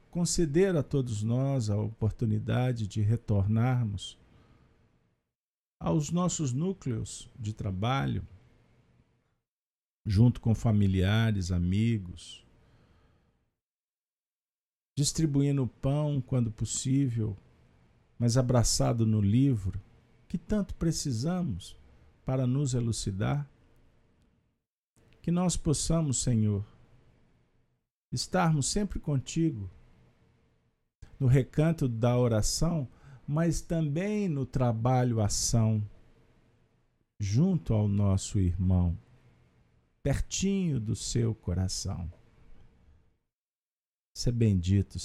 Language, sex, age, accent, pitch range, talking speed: Portuguese, male, 50-69, Brazilian, 105-145 Hz, 80 wpm